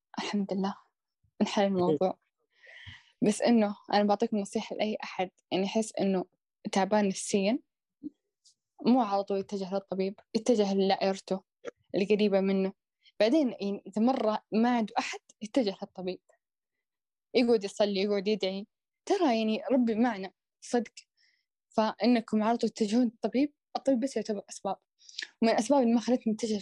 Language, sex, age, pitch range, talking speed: Arabic, female, 10-29, 195-245 Hz, 130 wpm